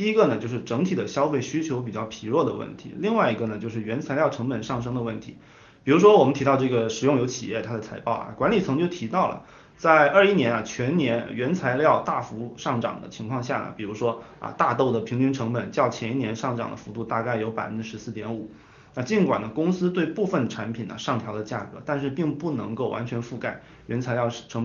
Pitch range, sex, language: 115-150 Hz, male, Chinese